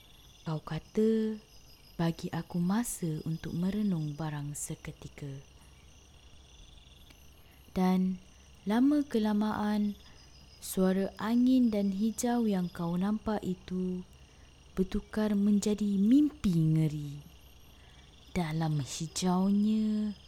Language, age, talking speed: Indonesian, 20-39, 75 wpm